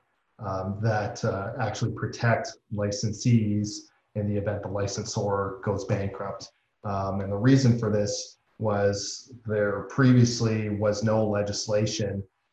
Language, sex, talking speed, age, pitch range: English, male, 120 wpm, 40-59, 100-110 Hz